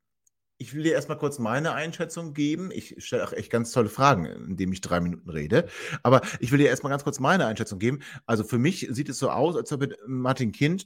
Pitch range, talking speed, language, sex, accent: 105-145 Hz, 225 wpm, German, male, German